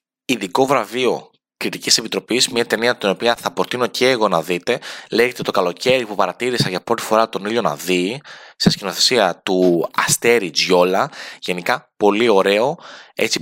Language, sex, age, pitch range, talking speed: Greek, male, 20-39, 95-115 Hz, 155 wpm